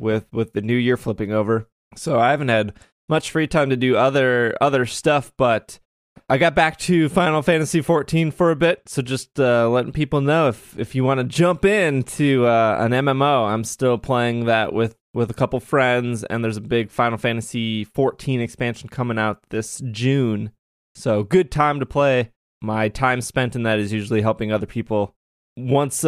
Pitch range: 115-160 Hz